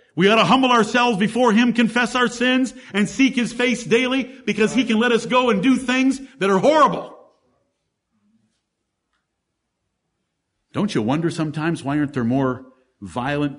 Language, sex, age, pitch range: English, male, 50-69, 115-190 Hz